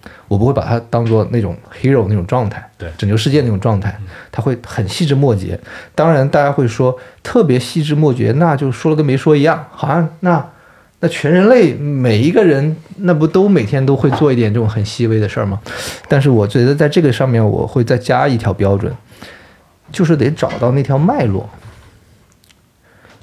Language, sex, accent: Chinese, male, native